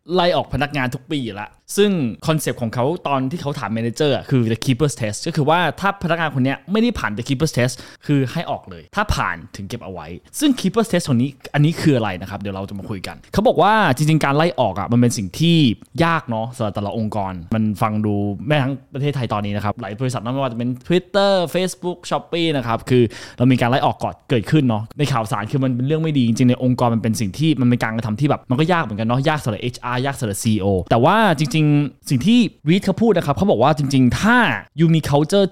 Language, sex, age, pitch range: Thai, male, 20-39, 115-155 Hz